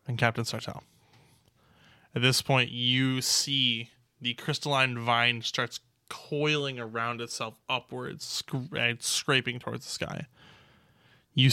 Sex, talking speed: male, 115 wpm